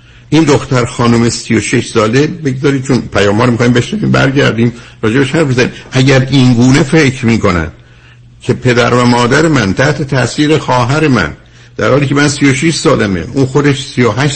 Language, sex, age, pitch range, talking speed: Persian, male, 60-79, 115-140 Hz, 170 wpm